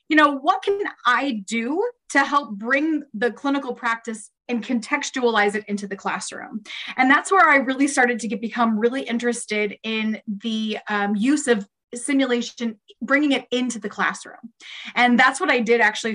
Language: English